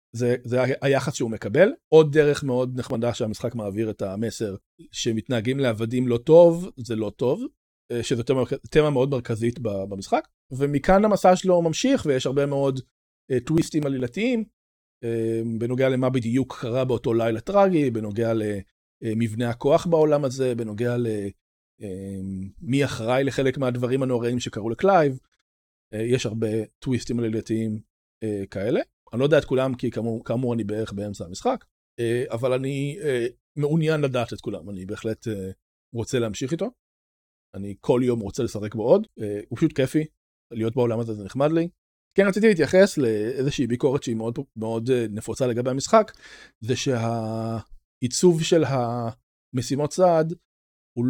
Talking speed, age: 135 wpm, 40-59